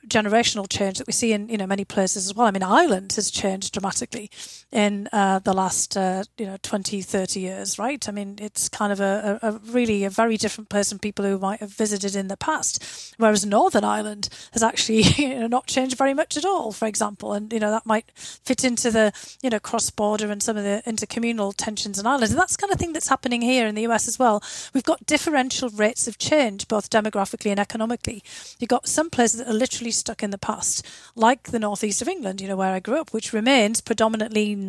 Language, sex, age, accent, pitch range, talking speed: English, female, 30-49, British, 205-240 Hz, 230 wpm